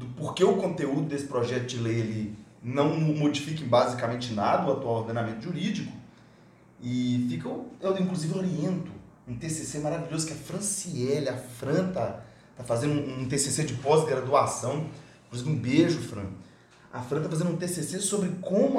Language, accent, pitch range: Portuguese, Brazilian, 125-205 Hz